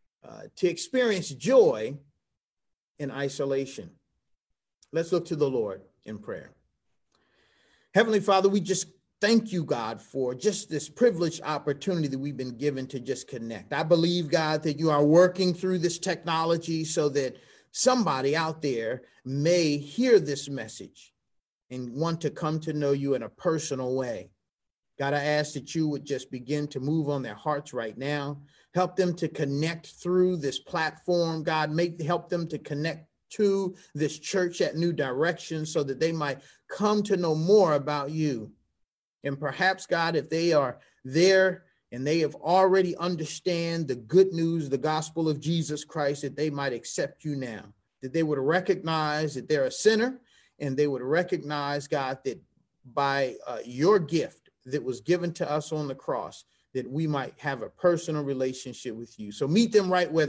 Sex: male